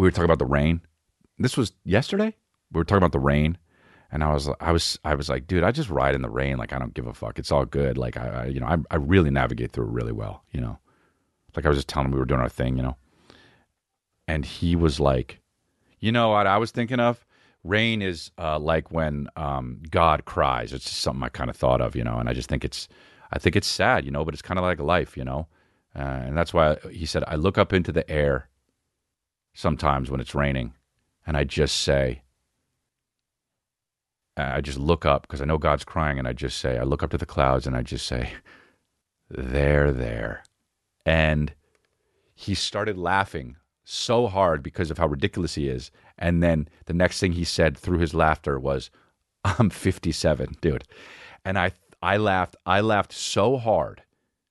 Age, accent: 40-59, American